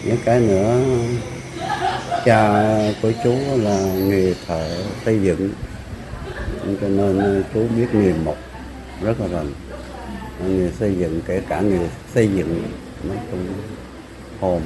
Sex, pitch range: male, 95-120 Hz